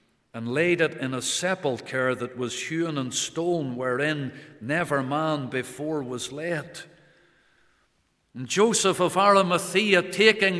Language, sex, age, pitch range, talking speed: English, male, 50-69, 145-180 Hz, 125 wpm